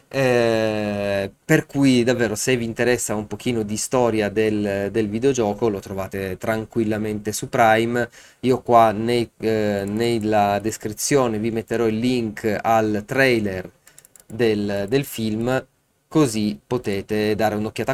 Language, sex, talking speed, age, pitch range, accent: Italian, male, 125 wpm, 20-39, 100-125 Hz, native